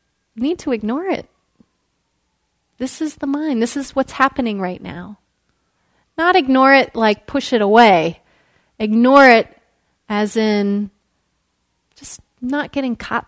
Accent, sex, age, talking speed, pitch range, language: American, female, 30-49, 130 wpm, 210-275 Hz, English